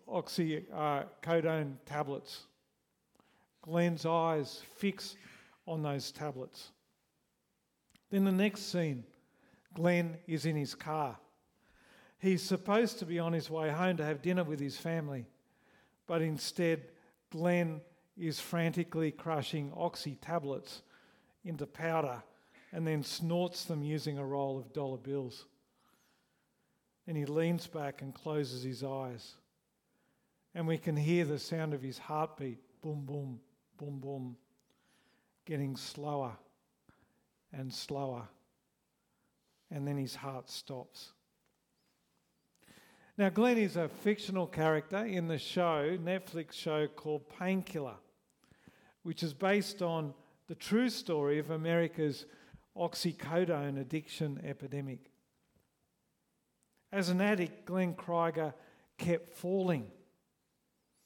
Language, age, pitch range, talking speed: English, 50-69, 140-175 Hz, 110 wpm